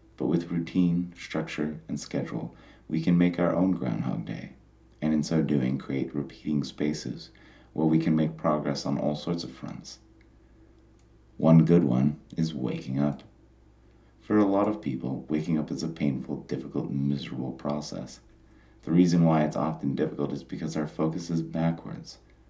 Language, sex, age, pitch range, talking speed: English, male, 30-49, 65-80 Hz, 165 wpm